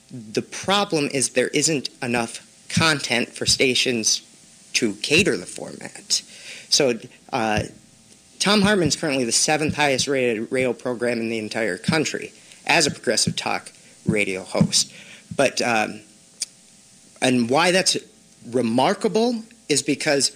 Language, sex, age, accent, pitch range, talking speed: English, male, 40-59, American, 120-160 Hz, 125 wpm